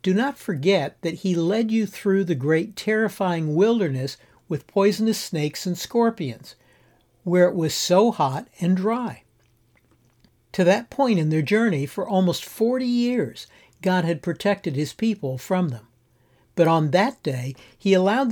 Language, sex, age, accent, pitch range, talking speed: English, male, 60-79, American, 135-195 Hz, 155 wpm